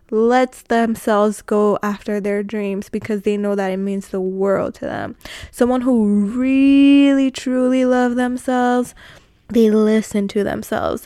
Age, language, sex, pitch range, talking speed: 20-39, English, female, 205-230 Hz, 140 wpm